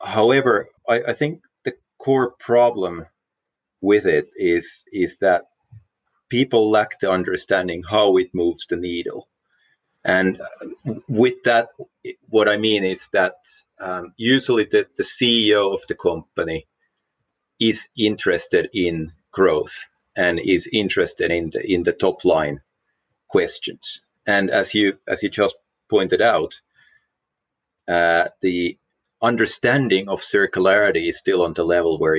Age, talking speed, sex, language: 30-49, 130 wpm, male, English